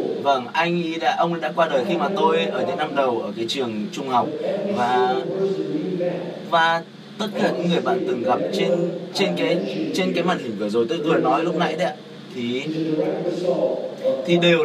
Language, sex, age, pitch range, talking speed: Vietnamese, male, 20-39, 165-230 Hz, 195 wpm